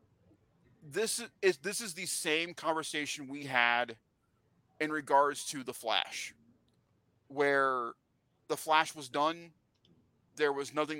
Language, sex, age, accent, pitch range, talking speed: English, male, 30-49, American, 125-145 Hz, 120 wpm